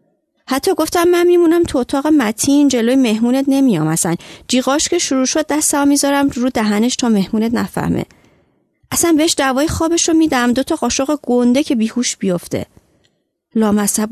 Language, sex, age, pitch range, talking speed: Persian, female, 30-49, 230-300 Hz, 150 wpm